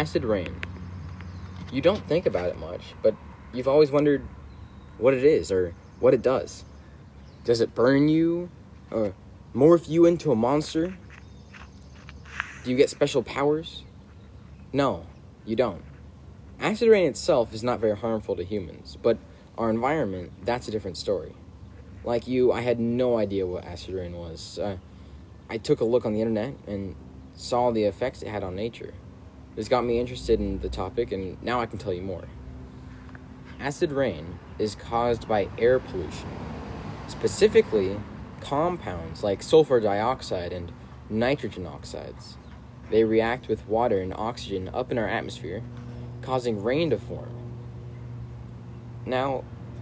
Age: 20-39